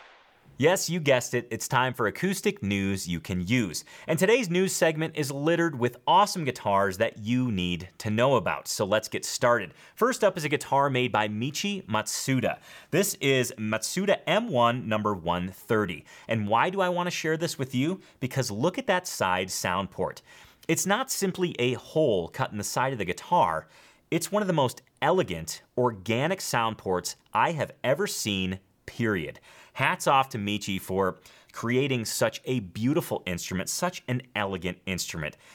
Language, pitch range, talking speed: English, 95-160 Hz, 170 wpm